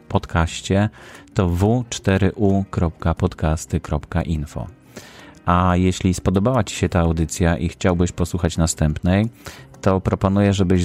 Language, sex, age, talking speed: Polish, male, 30-49, 95 wpm